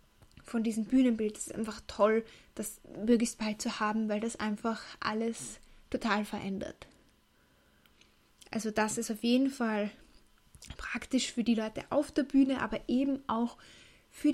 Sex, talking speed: female, 145 wpm